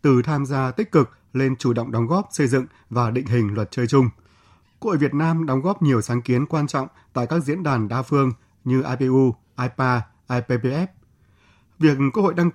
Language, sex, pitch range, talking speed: Vietnamese, male, 120-150 Hz, 200 wpm